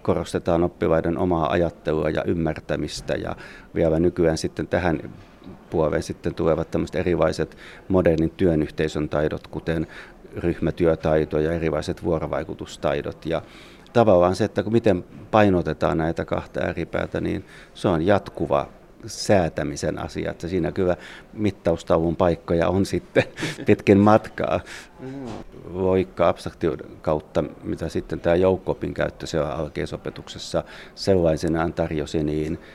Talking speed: 110 wpm